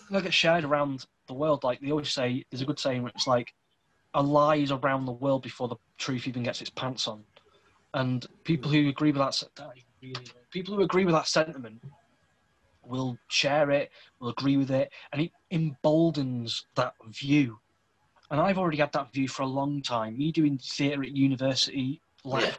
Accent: British